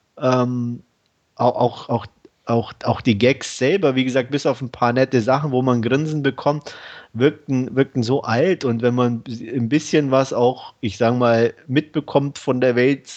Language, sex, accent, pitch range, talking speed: German, male, German, 115-140 Hz, 160 wpm